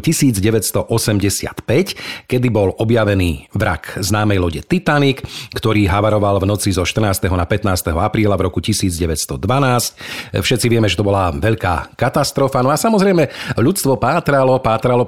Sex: male